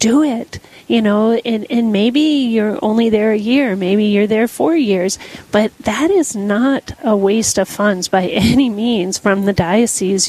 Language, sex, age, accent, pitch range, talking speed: English, female, 40-59, American, 200-230 Hz, 180 wpm